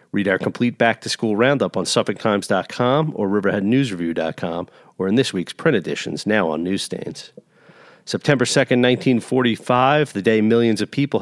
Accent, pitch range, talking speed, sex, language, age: American, 100-120 Hz, 140 wpm, male, English, 40-59